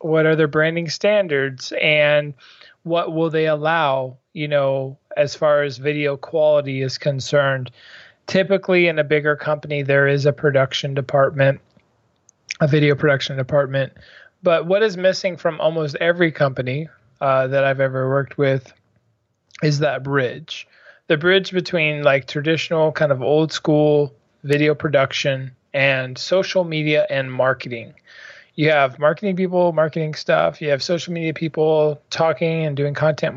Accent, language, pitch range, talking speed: American, English, 140-165 Hz, 145 wpm